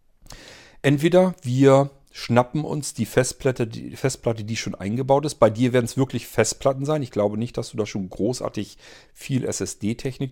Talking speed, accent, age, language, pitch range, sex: 165 wpm, German, 40-59, German, 100-130 Hz, male